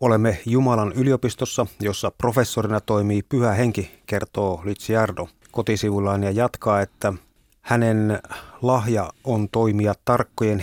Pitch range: 105-120 Hz